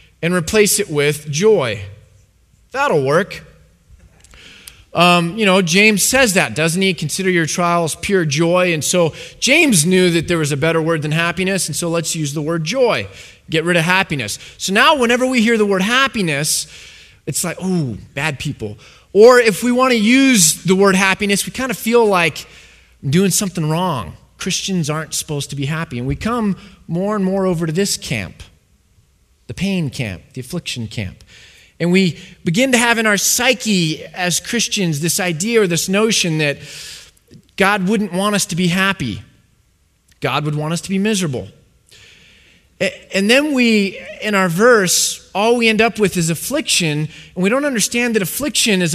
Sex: male